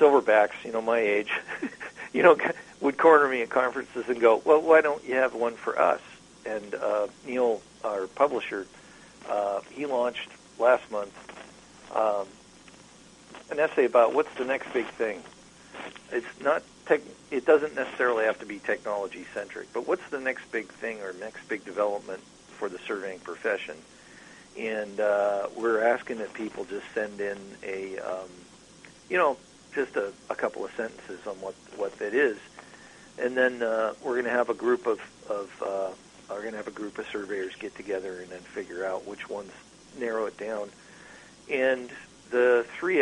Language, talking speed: English, 170 wpm